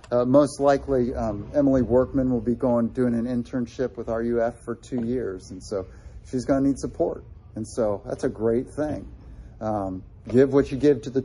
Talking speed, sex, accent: 195 wpm, male, American